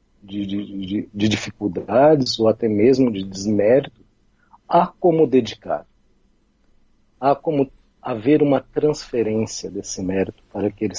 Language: Portuguese